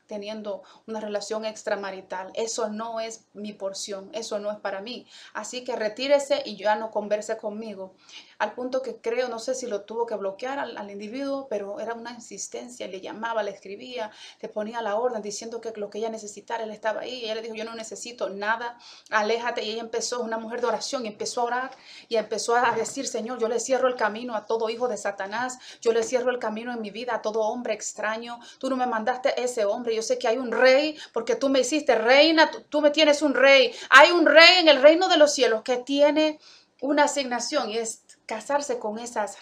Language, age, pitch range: Spanish, 30-49, 215-255 Hz